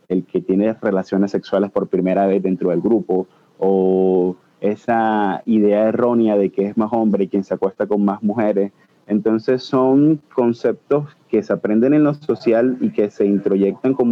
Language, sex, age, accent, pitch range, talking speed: Spanish, male, 30-49, Venezuelan, 100-125 Hz, 175 wpm